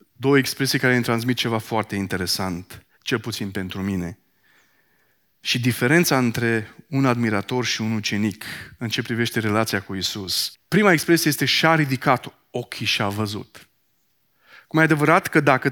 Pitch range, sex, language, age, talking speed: 115-155 Hz, male, Romanian, 30-49, 150 wpm